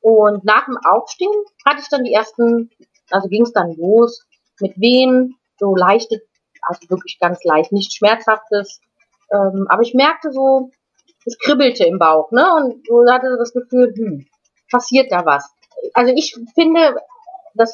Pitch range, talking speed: 205-260 Hz, 160 wpm